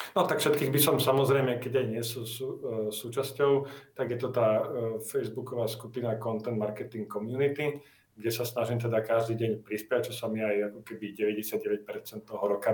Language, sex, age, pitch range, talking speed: Slovak, male, 40-59, 115-130 Hz, 180 wpm